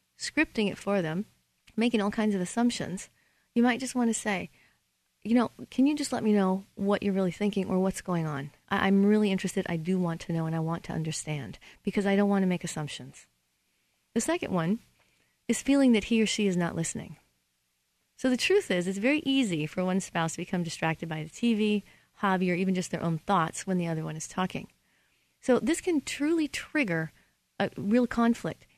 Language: English